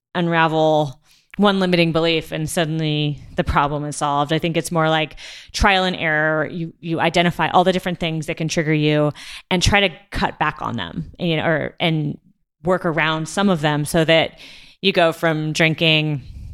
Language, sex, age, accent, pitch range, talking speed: English, female, 20-39, American, 150-175 Hz, 180 wpm